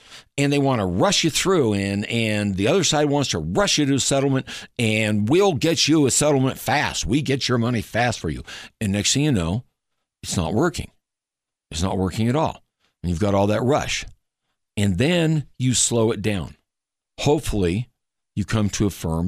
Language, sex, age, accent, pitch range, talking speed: English, male, 60-79, American, 95-130 Hz, 200 wpm